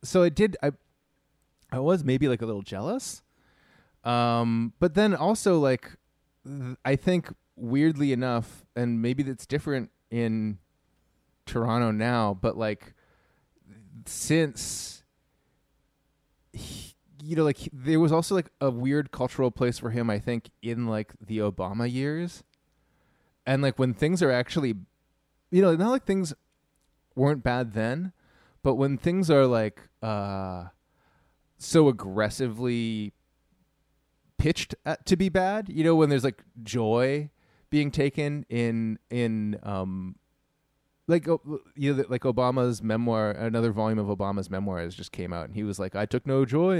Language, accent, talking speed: English, American, 145 wpm